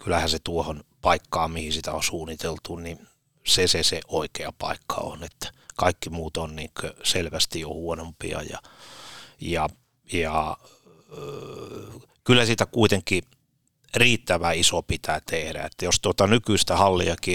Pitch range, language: 85-100 Hz, Finnish